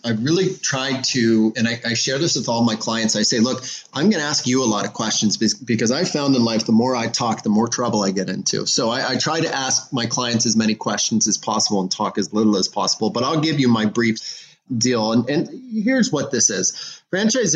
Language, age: English, 30-49